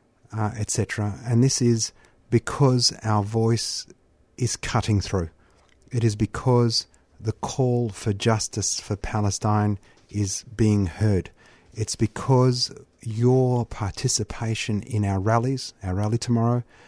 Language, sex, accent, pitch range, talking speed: English, male, Australian, 105-120 Hz, 115 wpm